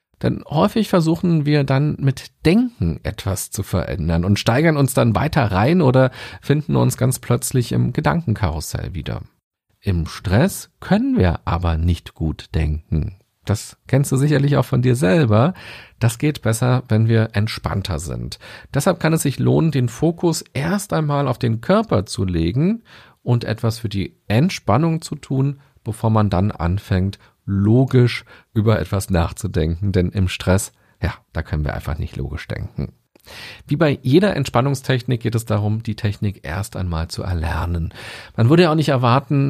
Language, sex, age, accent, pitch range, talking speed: German, male, 40-59, German, 90-130 Hz, 160 wpm